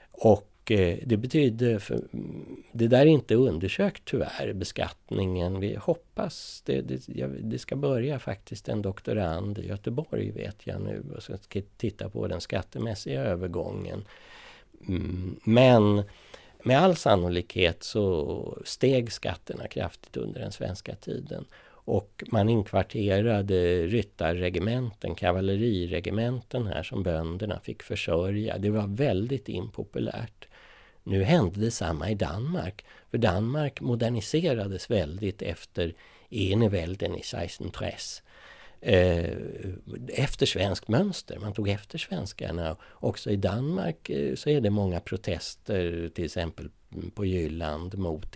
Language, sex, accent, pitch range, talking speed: Danish, male, Swedish, 90-115 Hz, 115 wpm